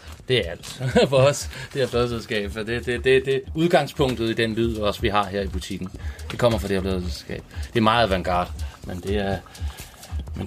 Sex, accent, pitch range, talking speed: male, Danish, 95-120 Hz, 205 wpm